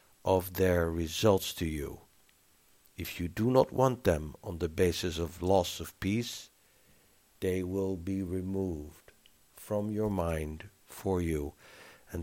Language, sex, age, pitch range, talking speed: English, male, 60-79, 85-100 Hz, 135 wpm